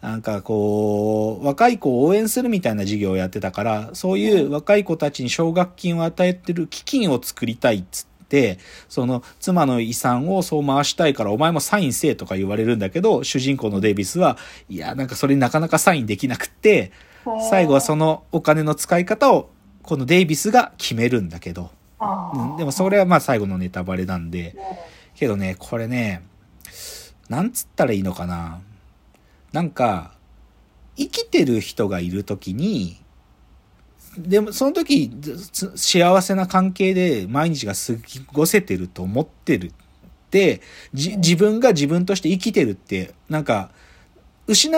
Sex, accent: male, native